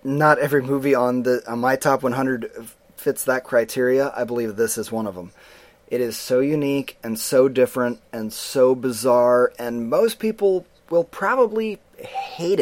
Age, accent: 30-49, American